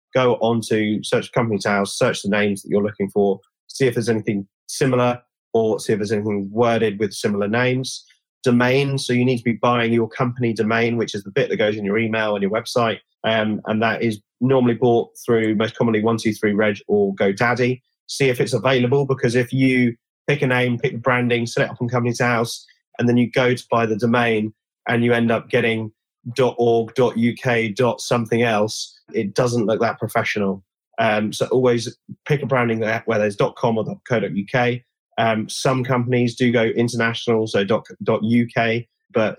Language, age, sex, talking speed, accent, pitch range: English, 30-49, male, 200 wpm, British, 110-125 Hz